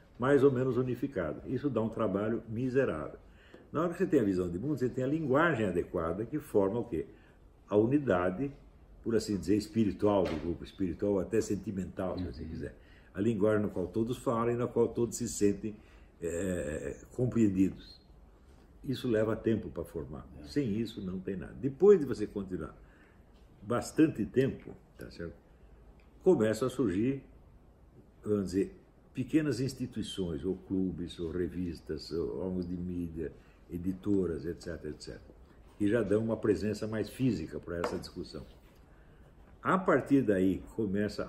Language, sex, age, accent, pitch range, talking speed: Portuguese, male, 60-79, Brazilian, 85-120 Hz, 155 wpm